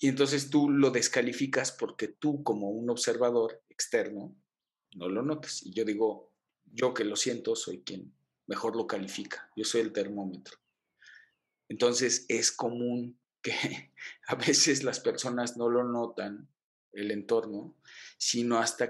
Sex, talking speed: male, 145 wpm